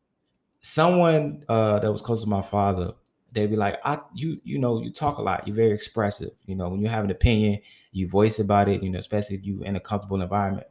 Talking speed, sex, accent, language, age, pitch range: 235 wpm, male, American, English, 20-39, 95-110 Hz